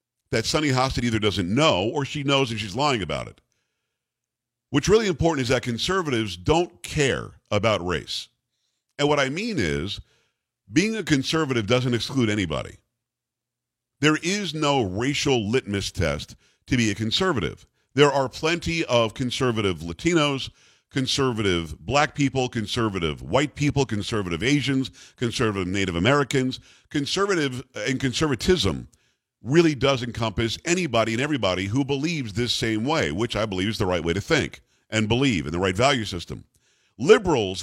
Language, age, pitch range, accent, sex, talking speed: English, 50-69, 110-140 Hz, American, male, 150 wpm